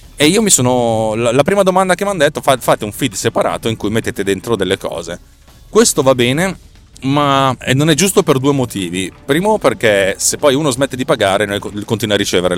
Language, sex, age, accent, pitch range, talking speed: Italian, male, 30-49, native, 95-135 Hz, 200 wpm